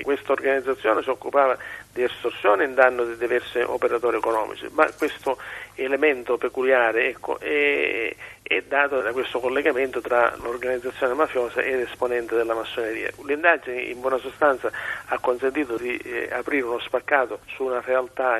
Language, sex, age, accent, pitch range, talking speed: Italian, male, 40-59, native, 120-175 Hz, 145 wpm